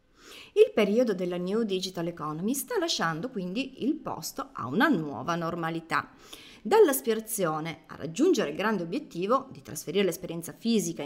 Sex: female